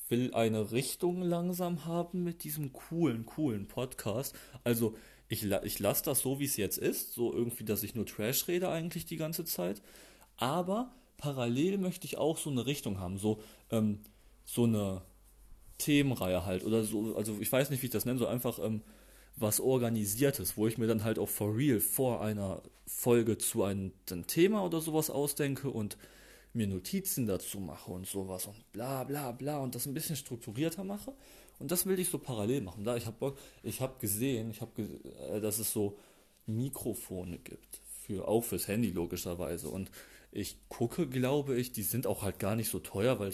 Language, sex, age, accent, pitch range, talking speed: German, male, 30-49, German, 105-145 Hz, 190 wpm